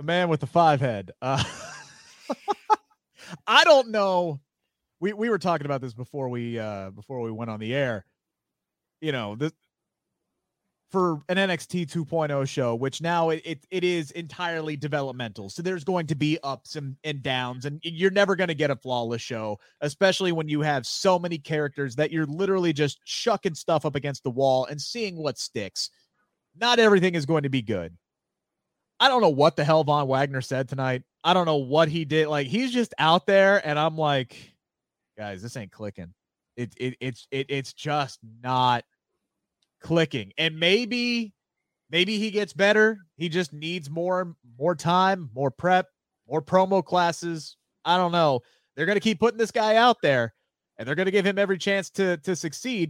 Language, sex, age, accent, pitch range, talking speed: English, male, 30-49, American, 135-185 Hz, 185 wpm